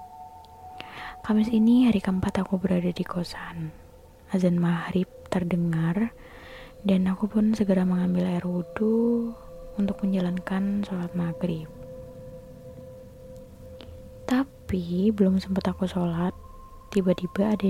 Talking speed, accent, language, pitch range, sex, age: 100 wpm, native, Indonesian, 150-205 Hz, female, 20-39